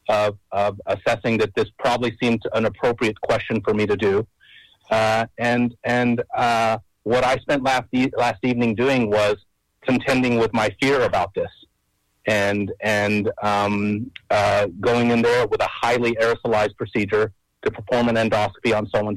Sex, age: male, 40-59